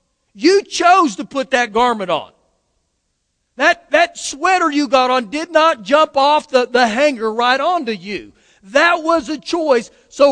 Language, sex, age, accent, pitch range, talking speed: English, male, 50-69, American, 225-300 Hz, 165 wpm